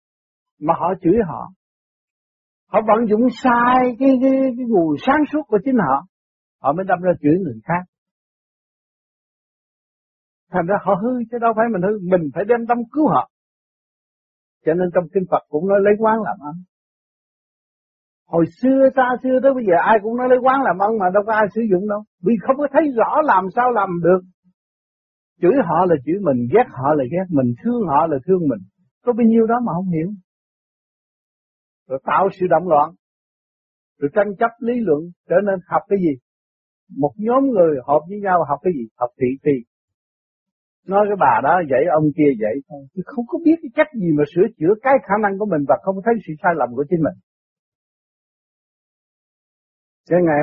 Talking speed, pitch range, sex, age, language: 195 wpm, 155-230 Hz, male, 60-79, Vietnamese